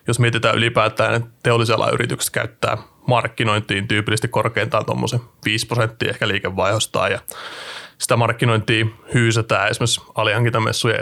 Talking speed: 105 wpm